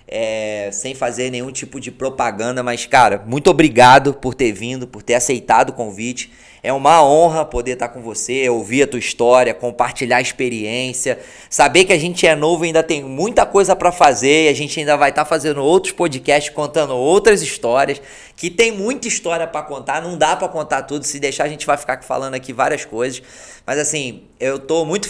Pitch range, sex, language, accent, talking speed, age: 125-160 Hz, male, Portuguese, Brazilian, 205 wpm, 20-39